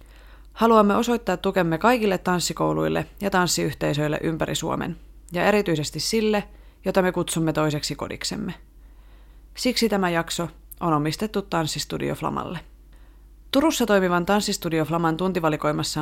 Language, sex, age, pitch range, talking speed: Finnish, female, 30-49, 155-205 Hz, 110 wpm